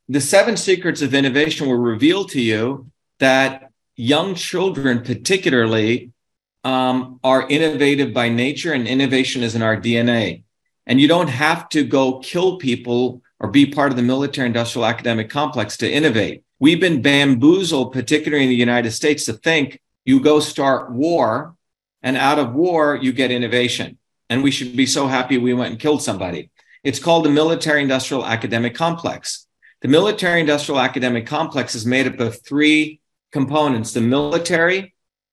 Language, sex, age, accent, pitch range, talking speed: English, male, 50-69, American, 125-150 Hz, 160 wpm